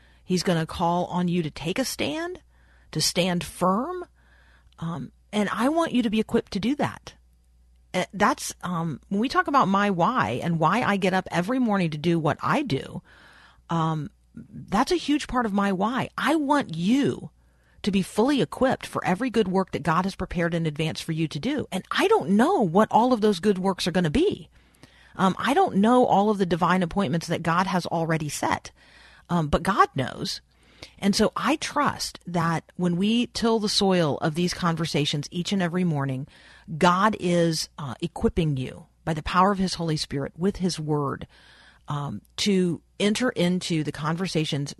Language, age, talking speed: English, 40-59, 190 wpm